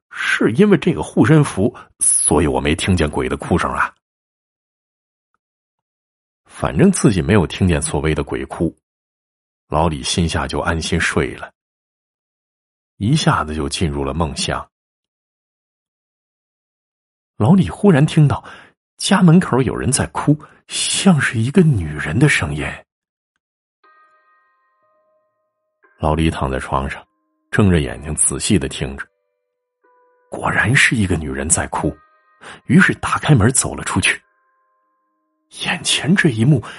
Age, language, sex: 50-69, Chinese, male